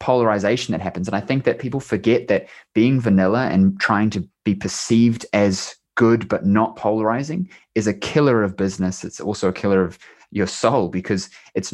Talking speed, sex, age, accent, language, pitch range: 185 wpm, male, 20-39, Australian, English, 95-115 Hz